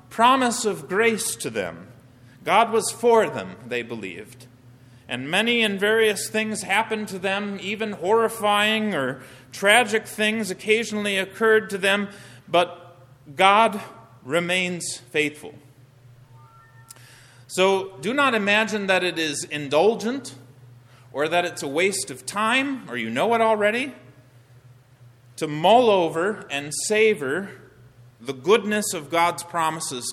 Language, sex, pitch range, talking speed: English, male, 130-210 Hz, 125 wpm